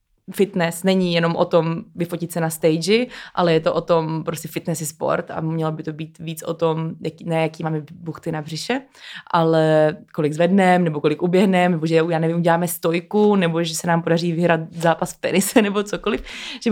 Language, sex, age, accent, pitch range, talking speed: Czech, female, 20-39, native, 170-200 Hz, 200 wpm